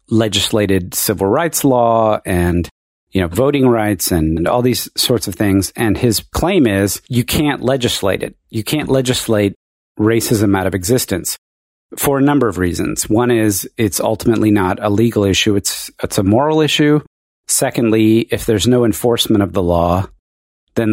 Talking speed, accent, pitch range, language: 165 wpm, American, 95-120 Hz, English